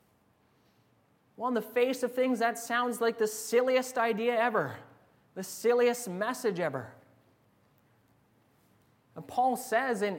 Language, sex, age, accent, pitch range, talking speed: English, male, 30-49, American, 165-225 Hz, 125 wpm